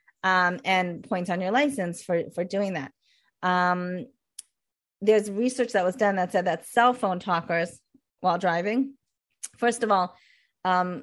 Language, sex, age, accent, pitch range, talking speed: English, female, 30-49, American, 175-235 Hz, 150 wpm